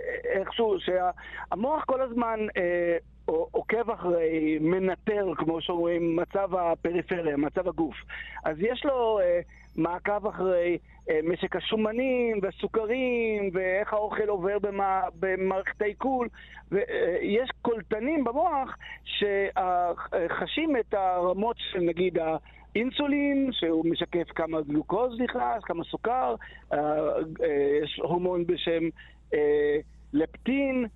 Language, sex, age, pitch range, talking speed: Hebrew, male, 50-69, 180-270 Hz, 105 wpm